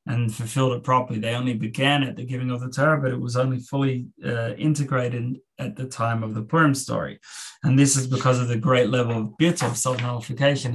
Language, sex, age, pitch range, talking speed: English, male, 20-39, 120-140 Hz, 220 wpm